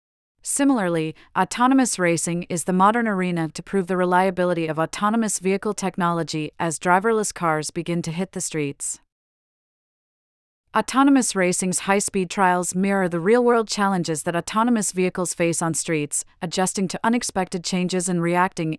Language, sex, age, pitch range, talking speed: English, female, 30-49, 165-200 Hz, 135 wpm